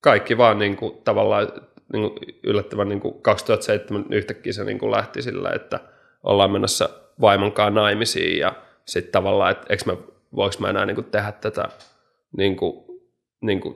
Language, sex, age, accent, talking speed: Finnish, male, 30-49, native, 150 wpm